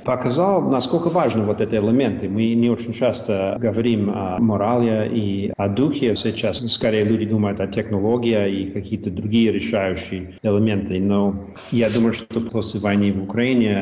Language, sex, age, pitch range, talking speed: Russian, male, 40-59, 100-115 Hz, 150 wpm